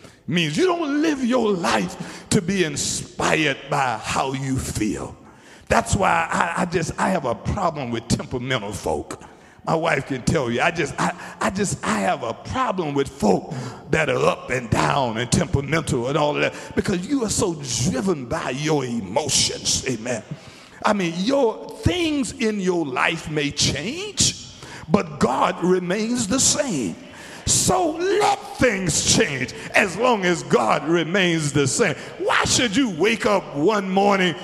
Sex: male